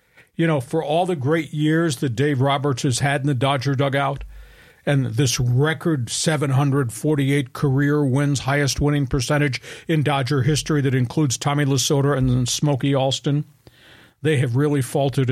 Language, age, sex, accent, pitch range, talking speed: English, 50-69, male, American, 130-155 Hz, 155 wpm